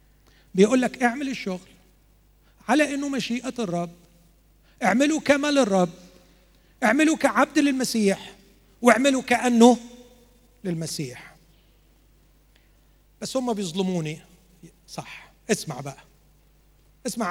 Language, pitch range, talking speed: Arabic, 160-230 Hz, 85 wpm